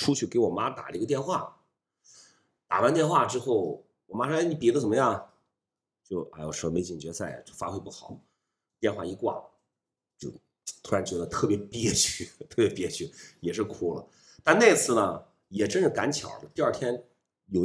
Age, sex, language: 30-49, male, Chinese